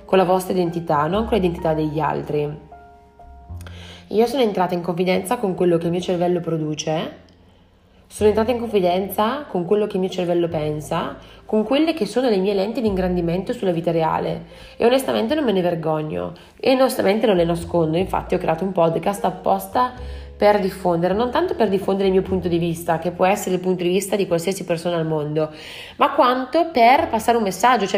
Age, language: 30-49, Italian